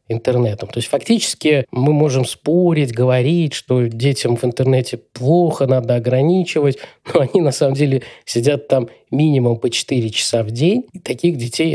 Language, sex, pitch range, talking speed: Russian, male, 125-160 Hz, 160 wpm